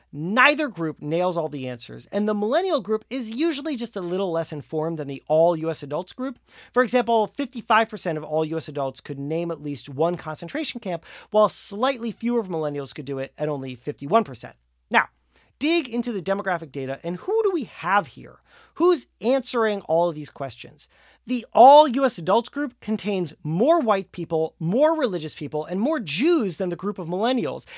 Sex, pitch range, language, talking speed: male, 165-250 Hz, English, 180 wpm